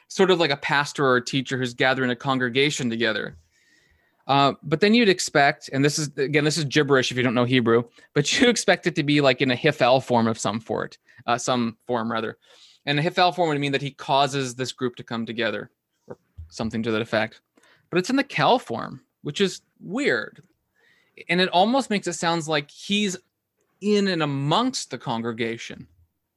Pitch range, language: 125-165 Hz, English